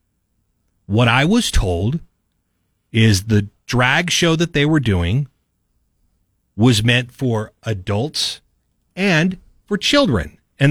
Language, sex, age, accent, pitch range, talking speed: English, male, 40-59, American, 105-155 Hz, 110 wpm